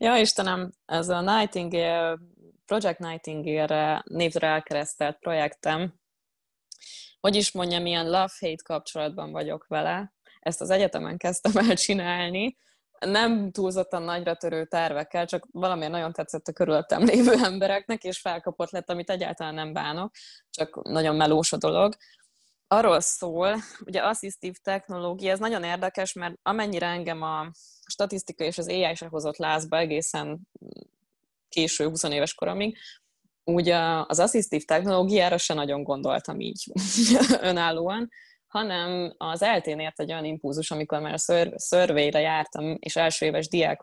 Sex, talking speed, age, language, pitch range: female, 135 wpm, 20-39, Hungarian, 155-195 Hz